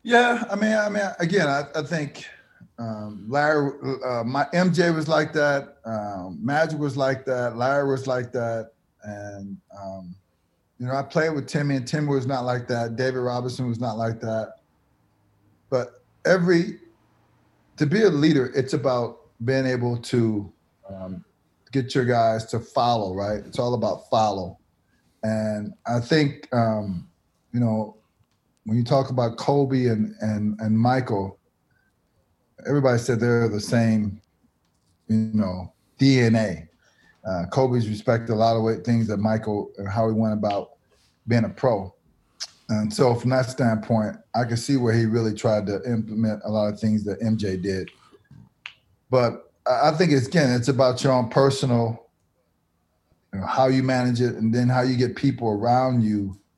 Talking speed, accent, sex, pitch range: 165 wpm, American, male, 105-135 Hz